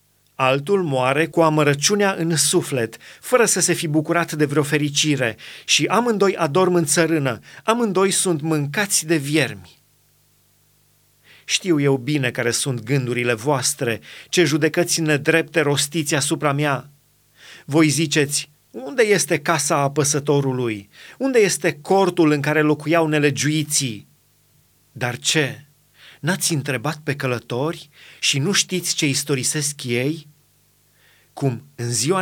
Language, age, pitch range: Romanian, 30-49, 135-165 Hz